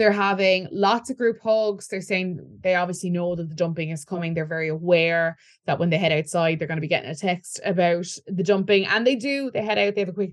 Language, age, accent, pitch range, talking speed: English, 20-39, Irish, 175-215 Hz, 255 wpm